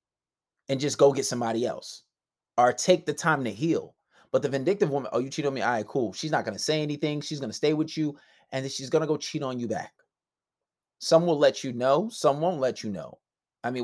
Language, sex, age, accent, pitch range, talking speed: English, male, 20-39, American, 125-190 Hz, 250 wpm